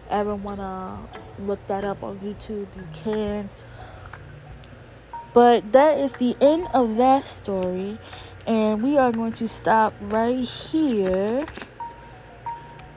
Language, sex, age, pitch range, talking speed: English, female, 20-39, 205-270 Hz, 120 wpm